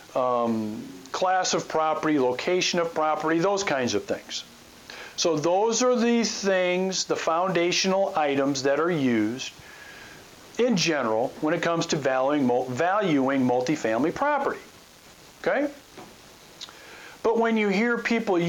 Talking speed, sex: 125 wpm, male